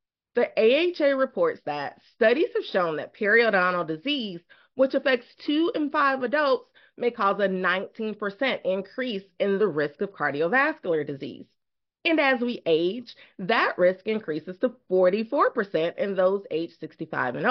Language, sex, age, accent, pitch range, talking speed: English, female, 30-49, American, 185-280 Hz, 140 wpm